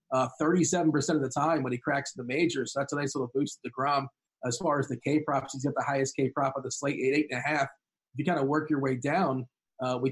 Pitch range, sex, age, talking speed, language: 130-155 Hz, male, 30-49, 295 wpm, English